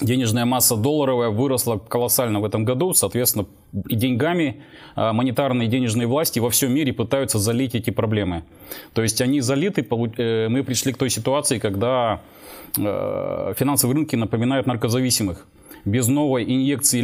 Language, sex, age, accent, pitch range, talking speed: Russian, male, 30-49, native, 115-135 Hz, 135 wpm